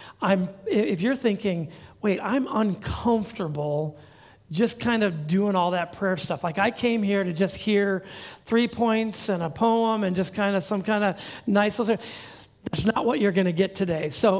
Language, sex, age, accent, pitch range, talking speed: English, male, 40-59, American, 175-220 Hz, 180 wpm